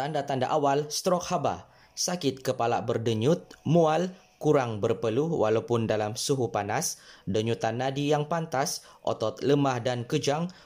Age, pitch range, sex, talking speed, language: 20-39, 120-150 Hz, male, 125 wpm, Malay